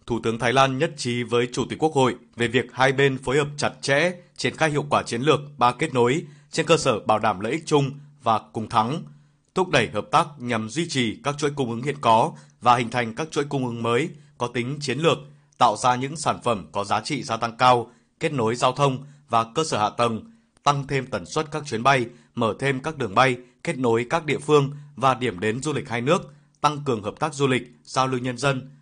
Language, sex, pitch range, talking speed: Vietnamese, male, 120-145 Hz, 245 wpm